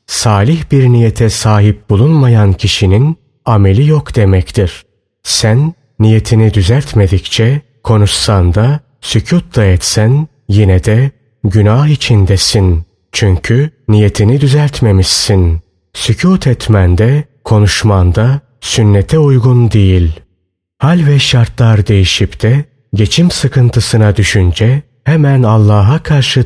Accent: native